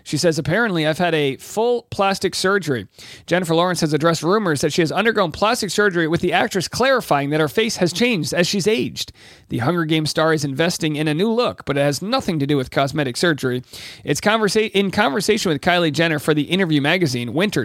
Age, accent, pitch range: 40-59, American, 150-195 Hz